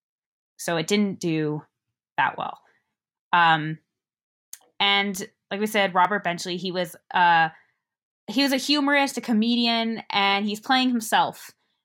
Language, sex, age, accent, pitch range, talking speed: English, female, 20-39, American, 180-235 Hz, 130 wpm